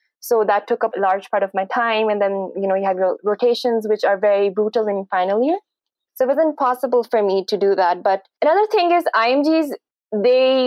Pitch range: 200-255 Hz